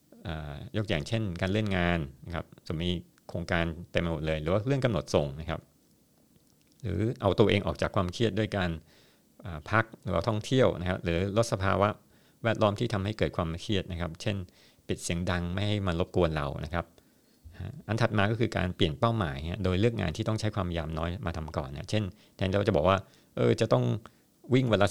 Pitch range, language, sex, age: 85-105 Hz, Thai, male, 60-79